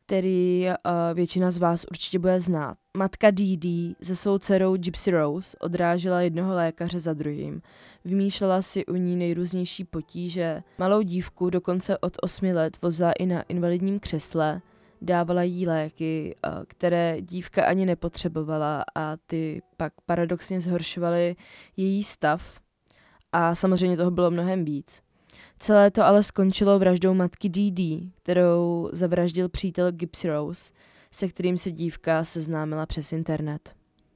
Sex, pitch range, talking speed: female, 165-185 Hz, 135 wpm